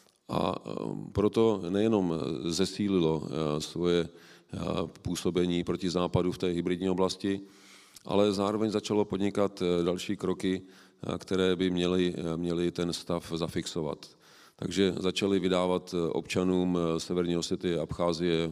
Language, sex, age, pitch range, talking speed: Czech, male, 40-59, 85-100 Hz, 105 wpm